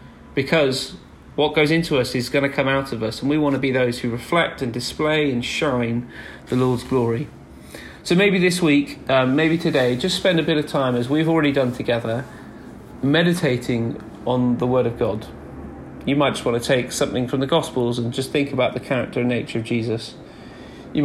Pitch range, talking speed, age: 120-145 Hz, 205 wpm, 30-49